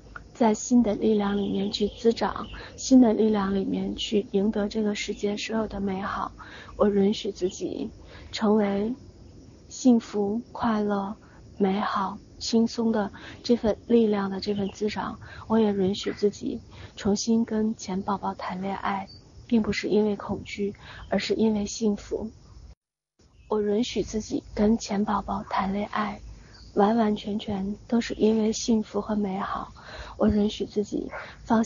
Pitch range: 200-220 Hz